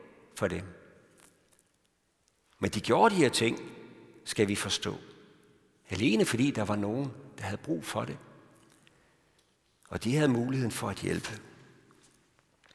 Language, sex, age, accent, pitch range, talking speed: Danish, male, 60-79, native, 115-175 Hz, 130 wpm